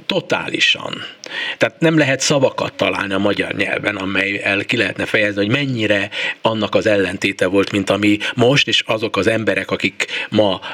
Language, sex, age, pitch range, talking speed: Hungarian, male, 60-79, 105-150 Hz, 155 wpm